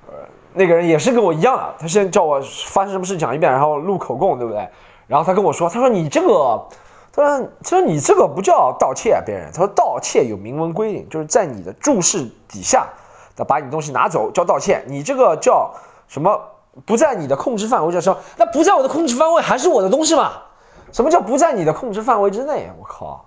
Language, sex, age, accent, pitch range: Chinese, male, 20-39, native, 155-260 Hz